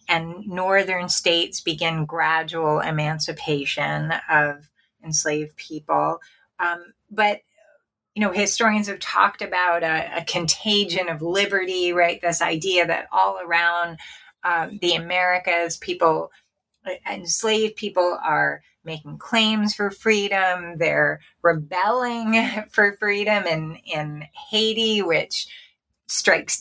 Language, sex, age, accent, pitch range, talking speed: English, female, 30-49, American, 170-210 Hz, 110 wpm